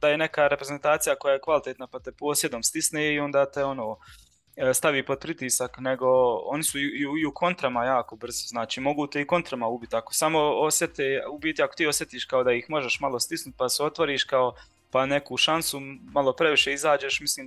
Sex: male